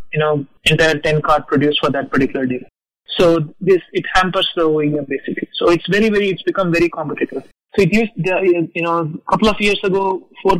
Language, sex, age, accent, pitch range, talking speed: English, male, 20-39, Indian, 150-175 Hz, 205 wpm